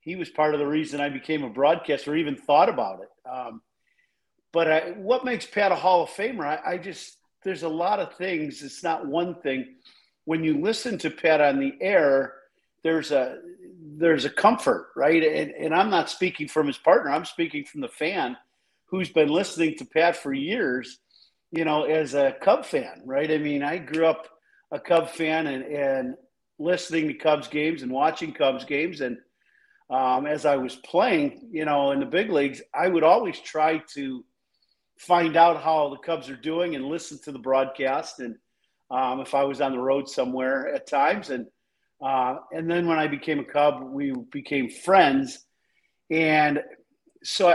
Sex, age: male, 50-69